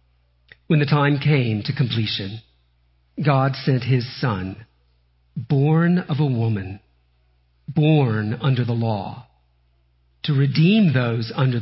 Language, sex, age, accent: English, male, 50-69, American